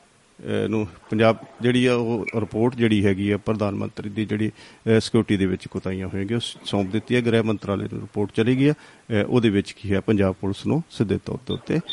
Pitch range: 100-120 Hz